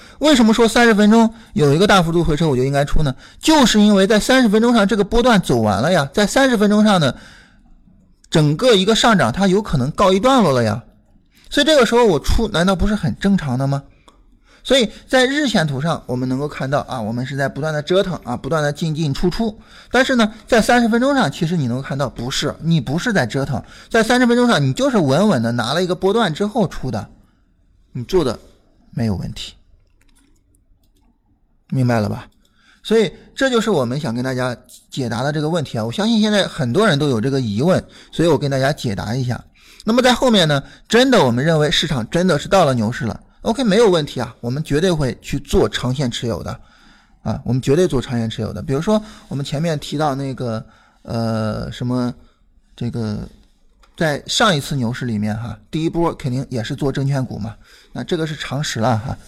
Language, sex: Chinese, male